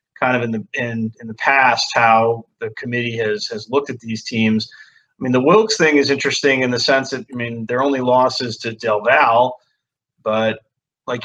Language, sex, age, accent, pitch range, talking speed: English, male, 30-49, American, 110-130 Hz, 195 wpm